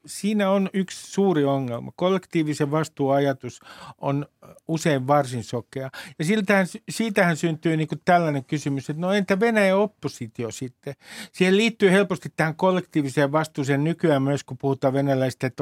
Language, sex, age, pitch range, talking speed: Finnish, male, 60-79, 135-180 Hz, 140 wpm